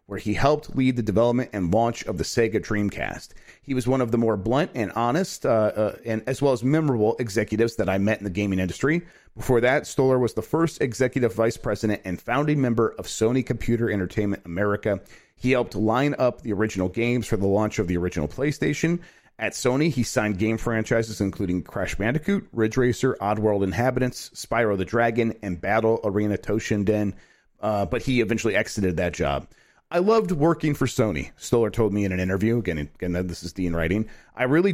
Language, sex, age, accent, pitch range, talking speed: English, male, 40-59, American, 105-130 Hz, 195 wpm